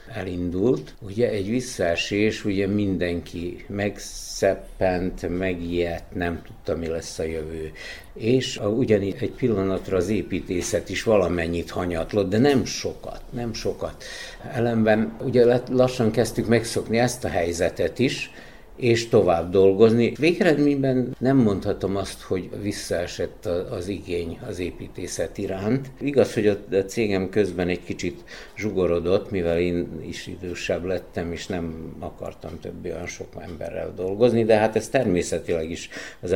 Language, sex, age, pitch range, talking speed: Hungarian, male, 60-79, 85-115 Hz, 125 wpm